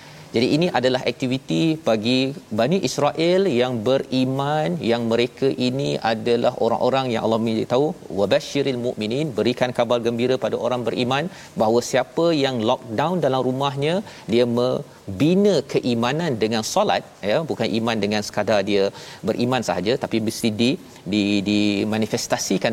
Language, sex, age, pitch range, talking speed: Malayalam, male, 40-59, 110-135 Hz, 130 wpm